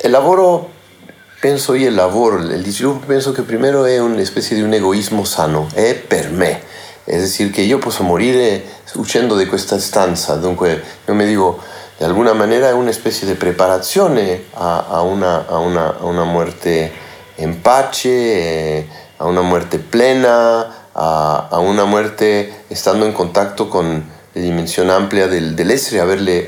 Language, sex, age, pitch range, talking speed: Italian, male, 40-59, 90-125 Hz, 160 wpm